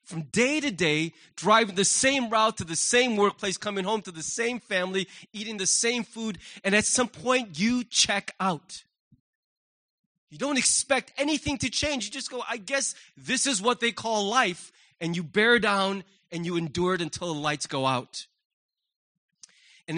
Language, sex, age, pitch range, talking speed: English, male, 30-49, 190-265 Hz, 180 wpm